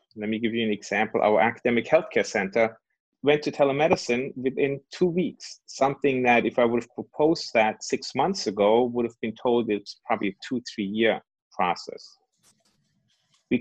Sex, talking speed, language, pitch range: male, 170 wpm, English, 110-140 Hz